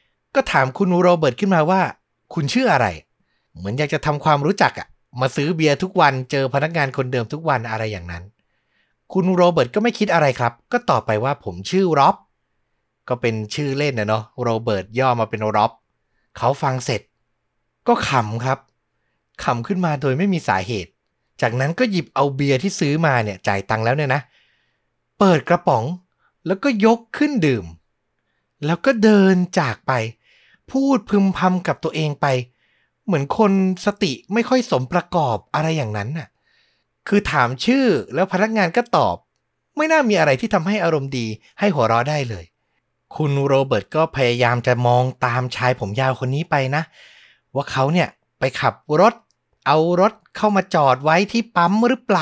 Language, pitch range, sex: Thai, 120-185 Hz, male